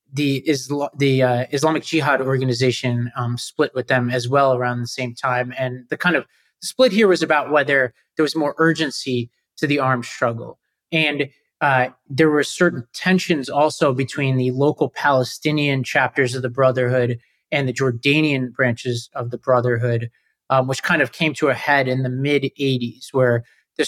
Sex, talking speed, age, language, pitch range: male, 170 wpm, 30-49, English, 125-150 Hz